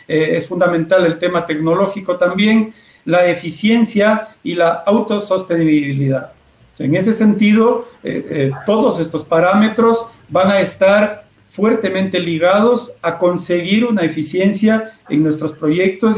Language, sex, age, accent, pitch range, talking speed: Spanish, male, 50-69, Mexican, 160-200 Hz, 115 wpm